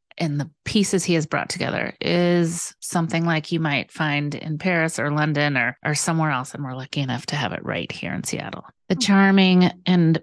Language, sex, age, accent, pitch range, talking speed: English, female, 30-49, American, 145-180 Hz, 205 wpm